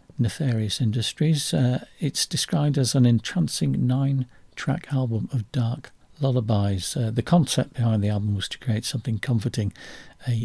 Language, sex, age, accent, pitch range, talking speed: English, male, 50-69, British, 115-150 Hz, 145 wpm